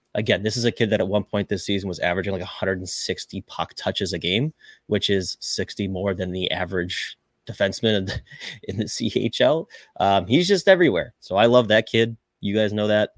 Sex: male